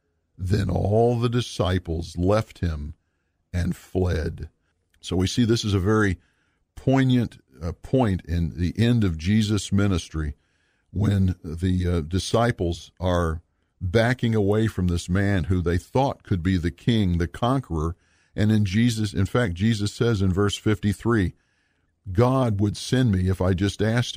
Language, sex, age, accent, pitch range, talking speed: English, male, 50-69, American, 85-105 Hz, 145 wpm